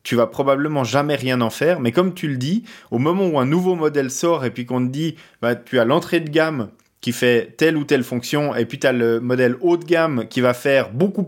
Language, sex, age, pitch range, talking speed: French, male, 20-39, 120-160 Hz, 270 wpm